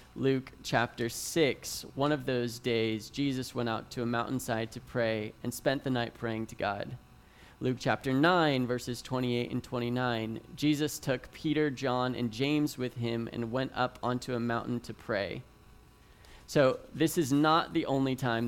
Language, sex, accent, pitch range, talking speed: English, male, American, 115-135 Hz, 170 wpm